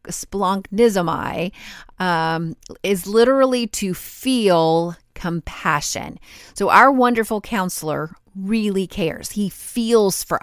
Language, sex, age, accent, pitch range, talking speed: English, female, 30-49, American, 165-215 Hz, 90 wpm